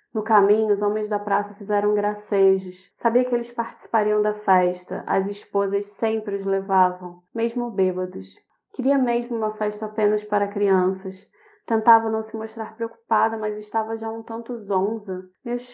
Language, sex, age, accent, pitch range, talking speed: Portuguese, female, 20-39, Brazilian, 200-230 Hz, 155 wpm